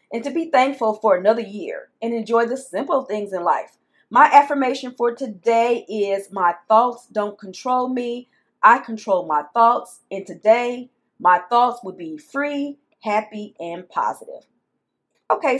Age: 40-59